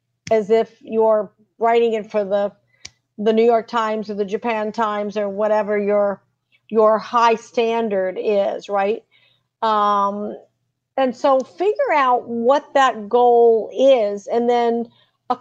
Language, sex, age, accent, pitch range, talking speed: English, female, 50-69, American, 210-270 Hz, 135 wpm